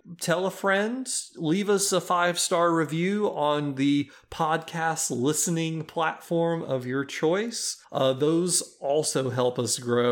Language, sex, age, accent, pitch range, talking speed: English, male, 30-49, American, 130-170 Hz, 135 wpm